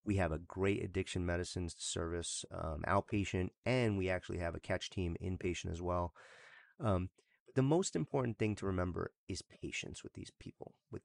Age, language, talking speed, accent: 30-49, English, 180 wpm, American